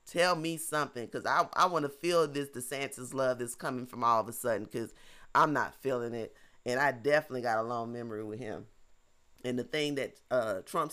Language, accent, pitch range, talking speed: English, American, 125-165 Hz, 210 wpm